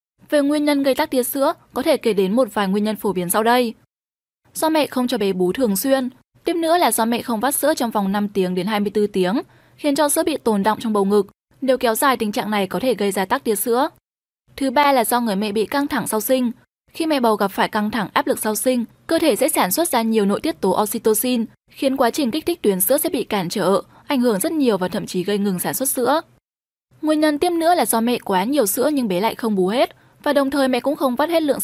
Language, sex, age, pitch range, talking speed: Vietnamese, female, 10-29, 215-290 Hz, 275 wpm